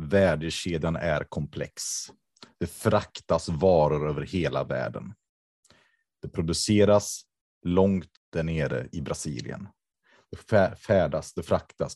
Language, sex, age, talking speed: Swedish, male, 30-49, 100 wpm